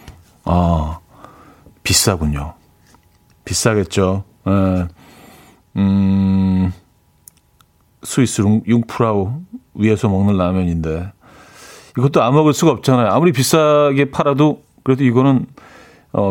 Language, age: Korean, 40-59